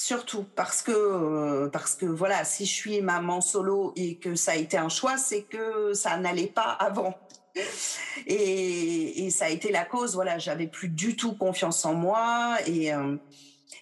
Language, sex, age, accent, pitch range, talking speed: French, female, 40-59, French, 180-235 Hz, 180 wpm